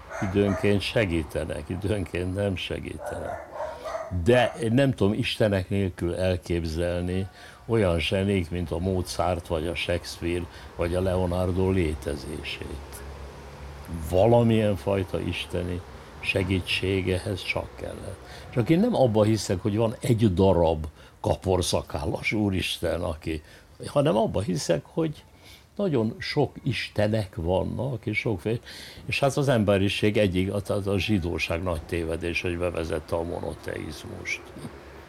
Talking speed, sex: 115 wpm, male